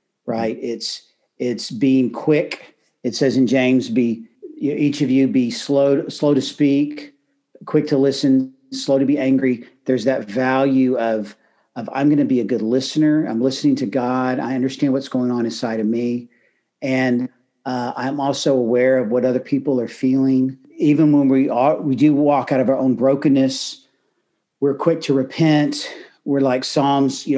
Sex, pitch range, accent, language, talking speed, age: male, 125-140 Hz, American, English, 175 wpm, 50-69